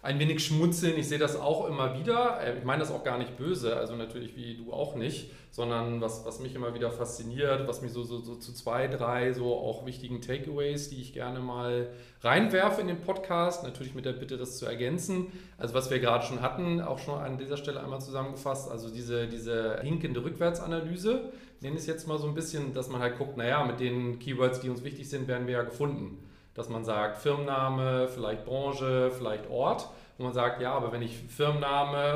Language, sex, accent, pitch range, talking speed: German, male, German, 120-145 Hz, 215 wpm